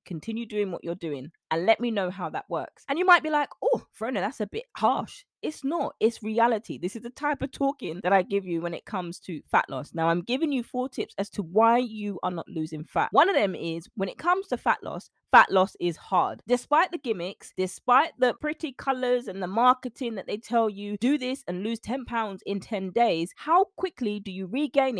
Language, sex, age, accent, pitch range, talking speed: English, female, 20-39, British, 195-270 Hz, 240 wpm